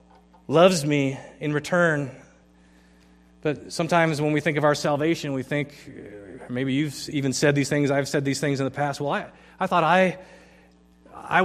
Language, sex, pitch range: English, male, 145-185 Hz